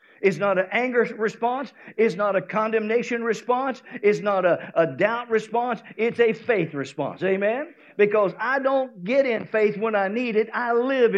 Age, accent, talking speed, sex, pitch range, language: 50-69, American, 175 wpm, male, 170-235 Hz, English